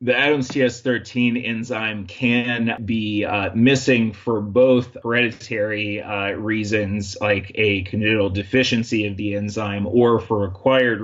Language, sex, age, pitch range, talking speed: English, male, 30-49, 100-115 Hz, 125 wpm